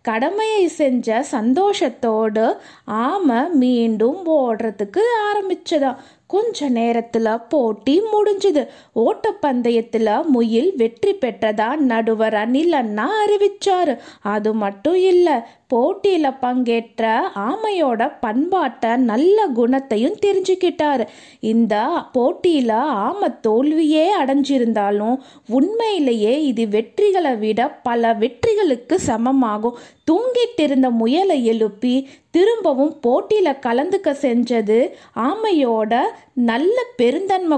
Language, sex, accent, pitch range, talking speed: Tamil, female, native, 230-325 Hz, 75 wpm